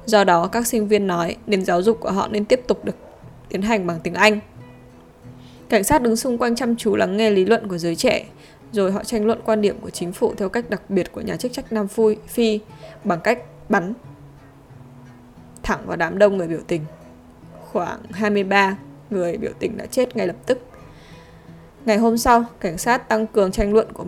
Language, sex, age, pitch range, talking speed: Vietnamese, female, 10-29, 175-220 Hz, 210 wpm